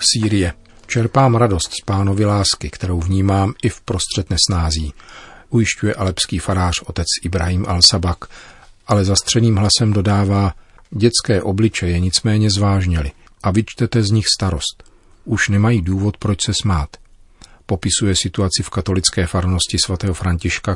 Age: 40-59